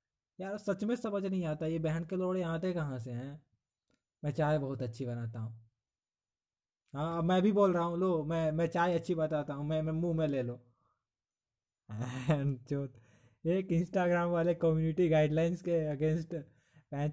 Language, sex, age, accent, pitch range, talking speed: Hindi, male, 20-39, native, 145-180 Hz, 170 wpm